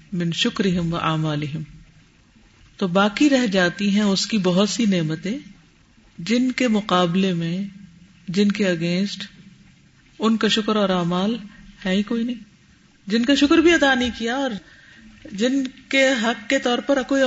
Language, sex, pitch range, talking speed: Urdu, female, 185-265 Hz, 155 wpm